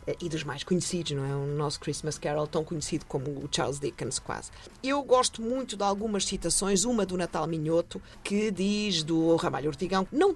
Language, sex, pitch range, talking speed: Portuguese, female, 150-195 Hz, 190 wpm